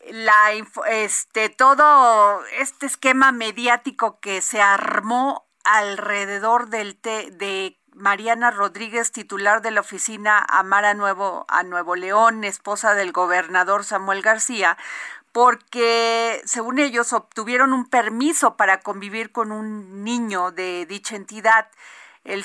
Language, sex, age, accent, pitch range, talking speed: Spanish, female, 40-59, Mexican, 195-235 Hz, 120 wpm